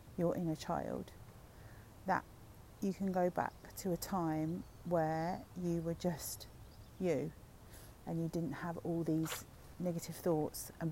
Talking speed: 135 wpm